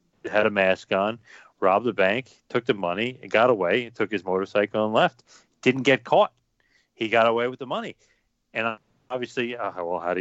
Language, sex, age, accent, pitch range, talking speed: English, male, 40-59, American, 105-135 Hz, 195 wpm